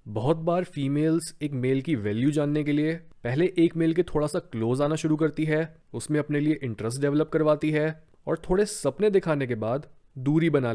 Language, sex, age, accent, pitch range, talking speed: Hindi, male, 30-49, native, 125-165 Hz, 200 wpm